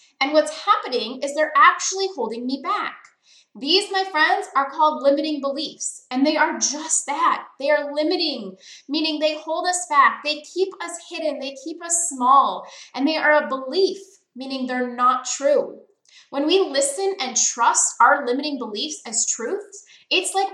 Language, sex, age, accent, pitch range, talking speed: English, female, 20-39, American, 270-345 Hz, 170 wpm